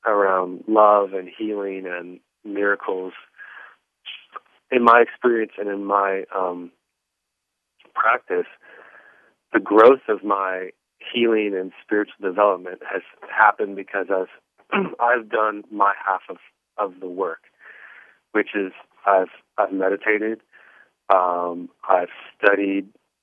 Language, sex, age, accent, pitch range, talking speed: English, male, 30-49, American, 95-105 Hz, 110 wpm